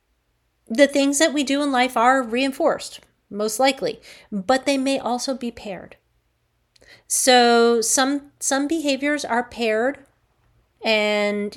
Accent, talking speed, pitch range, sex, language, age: American, 125 wpm, 205-260 Hz, female, English, 30-49